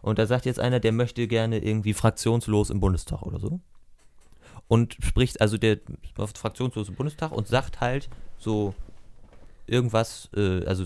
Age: 30-49